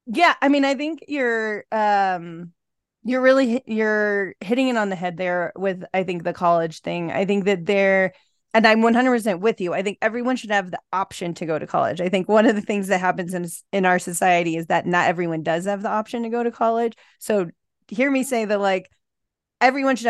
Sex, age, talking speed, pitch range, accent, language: female, 30-49, 220 wpm, 175-220 Hz, American, English